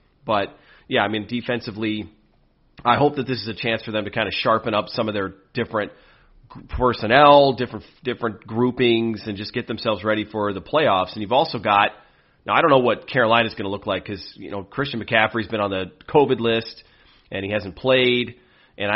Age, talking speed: 30-49, 205 wpm